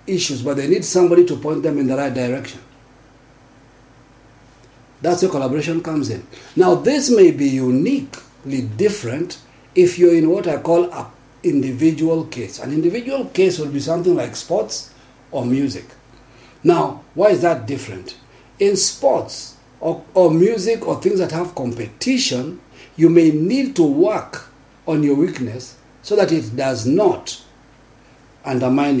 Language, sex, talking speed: English, male, 145 wpm